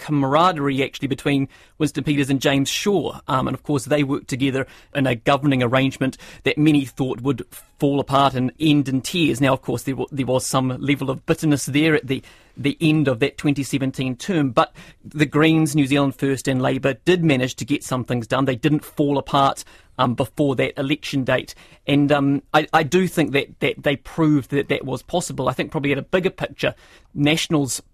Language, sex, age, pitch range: English, male, 30-49, 135-155 Hz